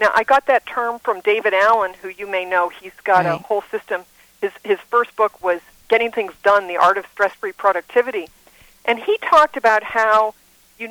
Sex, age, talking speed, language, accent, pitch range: female, 50-69, 200 wpm, English, American, 195-255 Hz